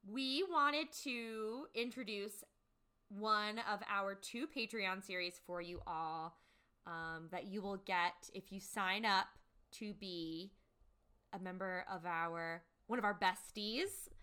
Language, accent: English, American